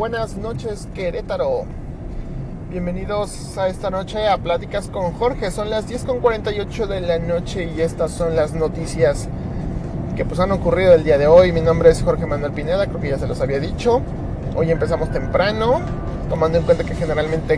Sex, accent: male, Mexican